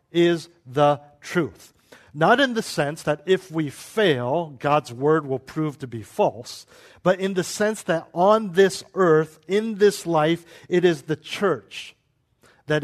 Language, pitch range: English, 140-180 Hz